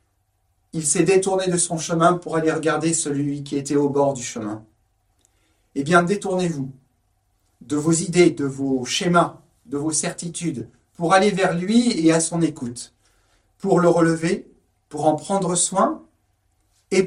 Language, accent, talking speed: French, French, 155 wpm